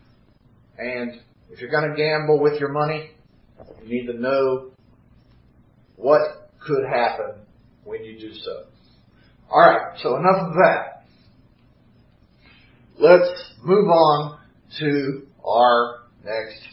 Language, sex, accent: English, male, American